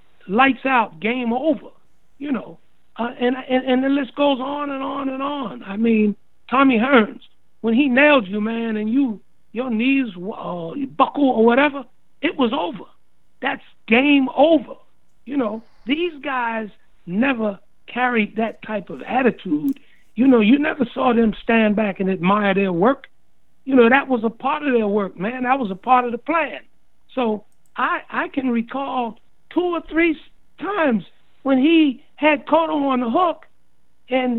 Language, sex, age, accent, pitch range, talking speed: English, male, 60-79, American, 205-275 Hz, 170 wpm